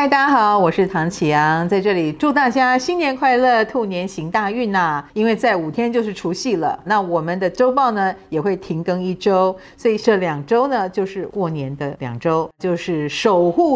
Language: Chinese